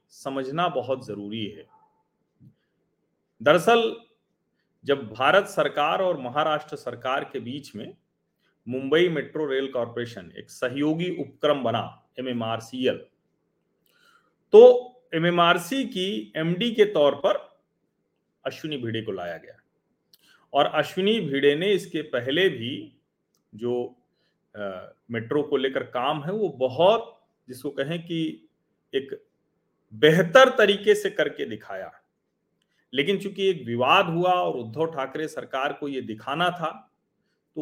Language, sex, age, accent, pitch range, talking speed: Hindi, male, 40-59, native, 130-200 Hz, 120 wpm